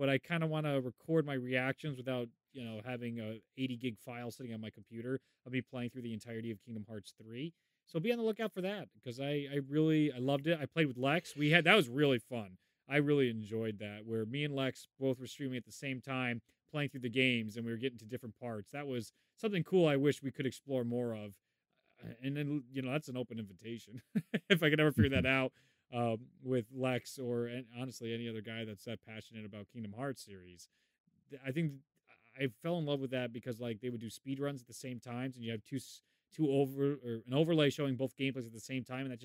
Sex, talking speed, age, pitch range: male, 245 wpm, 30-49, 120-145 Hz